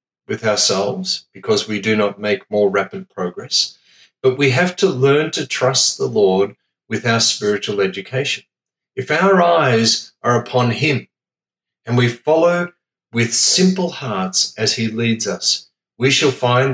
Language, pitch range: English, 100-140 Hz